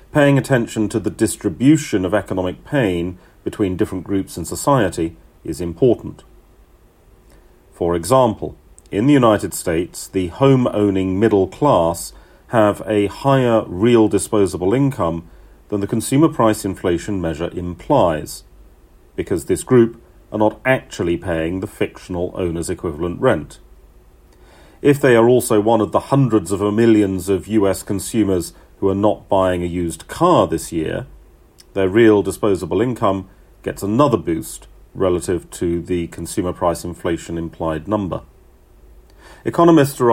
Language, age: English, 40-59